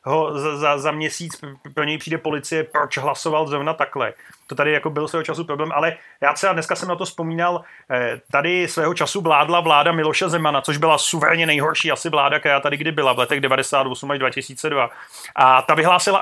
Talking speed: 190 wpm